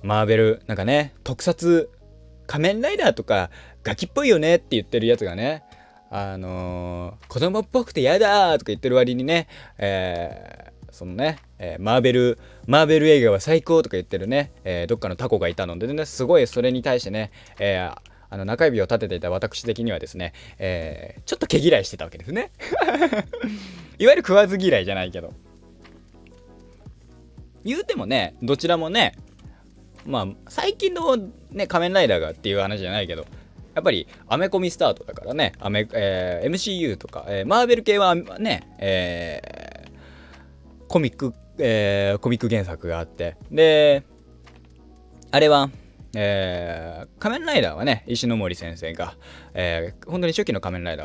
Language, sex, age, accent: Japanese, male, 20-39, native